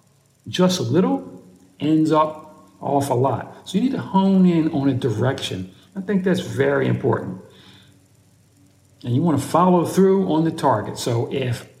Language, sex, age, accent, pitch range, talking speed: English, male, 60-79, American, 120-160 Hz, 170 wpm